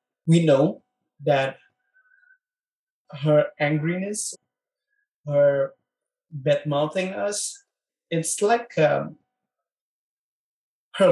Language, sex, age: English, male, 20-39